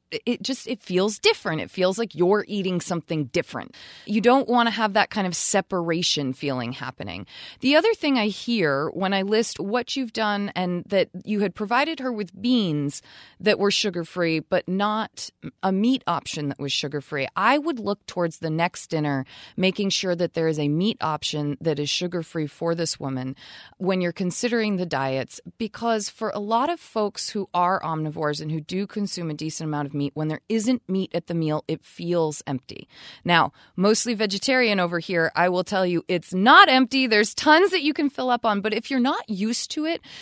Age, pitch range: 30-49, 165-225 Hz